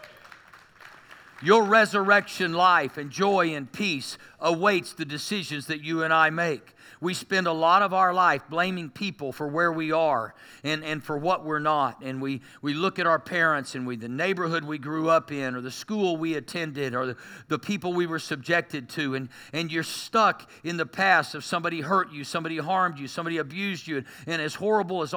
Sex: male